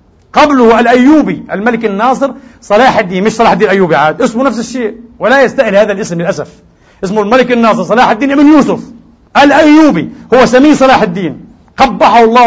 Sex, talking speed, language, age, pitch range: male, 160 wpm, English, 40-59, 180-255 Hz